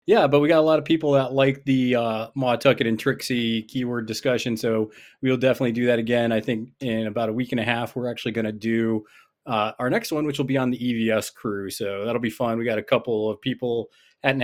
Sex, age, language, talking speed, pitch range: male, 20-39, English, 240 wpm, 115-145 Hz